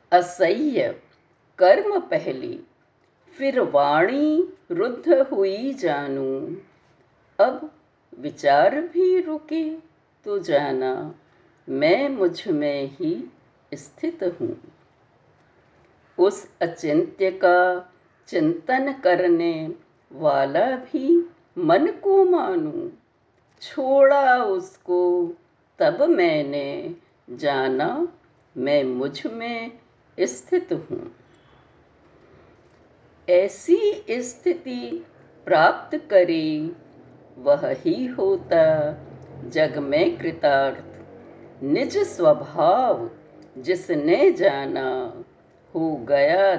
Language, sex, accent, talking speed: Hindi, female, native, 70 wpm